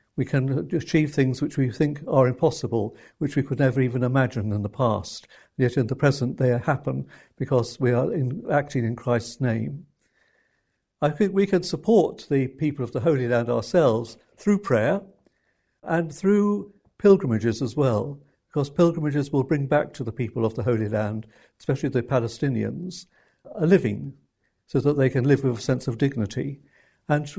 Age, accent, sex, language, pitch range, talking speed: 60-79, British, male, English, 125-155 Hz, 170 wpm